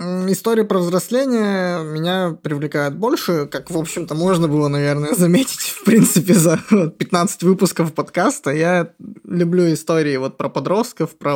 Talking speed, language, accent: 135 wpm, Russian, native